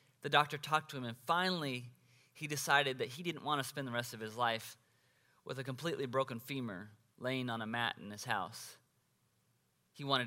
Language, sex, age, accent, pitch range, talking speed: English, male, 30-49, American, 120-150 Hz, 200 wpm